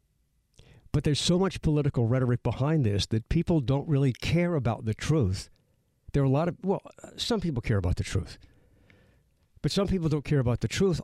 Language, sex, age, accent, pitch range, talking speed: English, male, 60-79, American, 105-145 Hz, 195 wpm